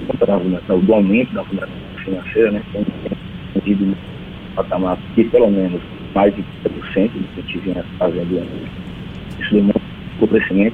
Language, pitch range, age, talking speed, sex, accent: Portuguese, 95-100 Hz, 30-49, 145 wpm, male, Brazilian